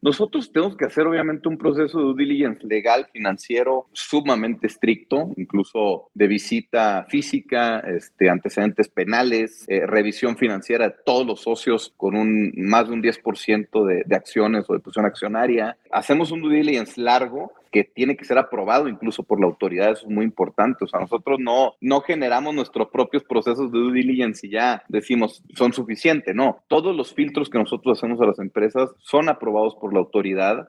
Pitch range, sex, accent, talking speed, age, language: 115-150 Hz, male, Mexican, 180 wpm, 30-49, Spanish